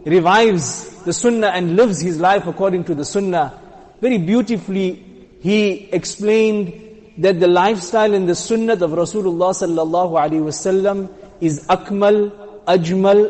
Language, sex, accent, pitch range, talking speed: English, male, Indian, 165-210 Hz, 130 wpm